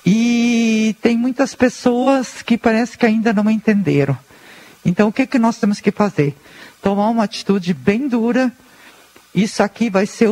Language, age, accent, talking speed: Portuguese, 50-69, Brazilian, 165 wpm